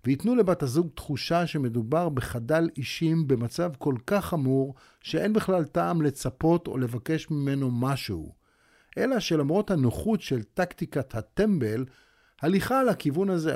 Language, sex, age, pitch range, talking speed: Hebrew, male, 50-69, 130-175 Hz, 130 wpm